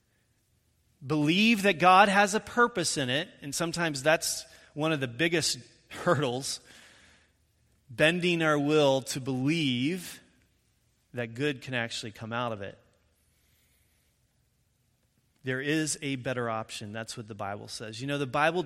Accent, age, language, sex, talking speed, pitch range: American, 30-49, English, male, 140 wpm, 120-185 Hz